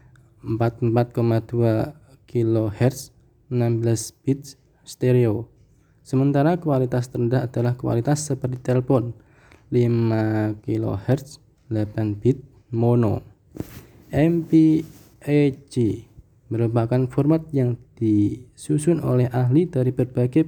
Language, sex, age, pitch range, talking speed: Indonesian, male, 20-39, 115-145 Hz, 75 wpm